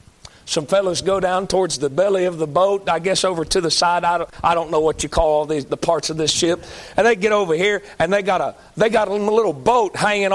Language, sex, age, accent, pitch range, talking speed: English, male, 40-59, American, 125-180 Hz, 240 wpm